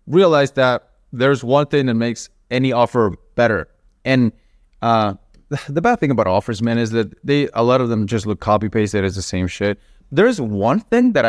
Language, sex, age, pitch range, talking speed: English, male, 30-49, 100-135 Hz, 190 wpm